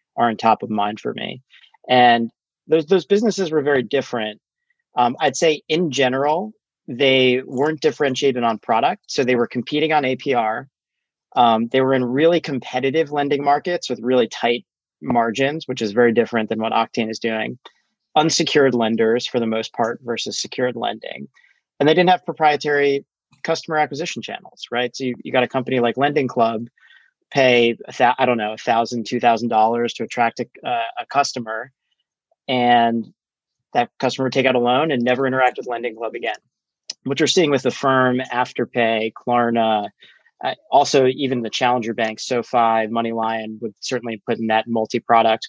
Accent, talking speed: American, 170 wpm